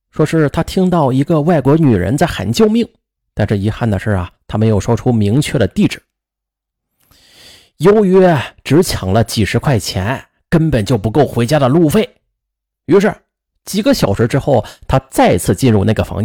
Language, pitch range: Chinese, 105-165 Hz